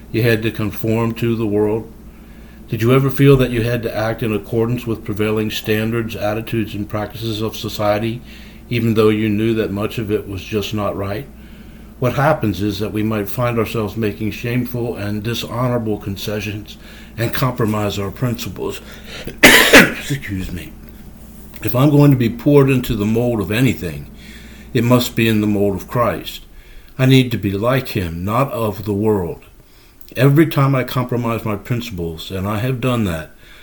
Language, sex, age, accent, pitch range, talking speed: English, male, 60-79, American, 105-120 Hz, 175 wpm